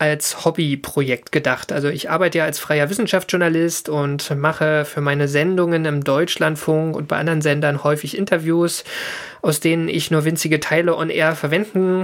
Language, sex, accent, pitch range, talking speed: German, male, German, 150-170 Hz, 160 wpm